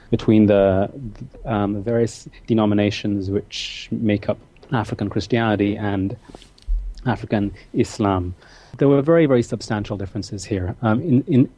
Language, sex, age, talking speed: English, male, 30-49, 120 wpm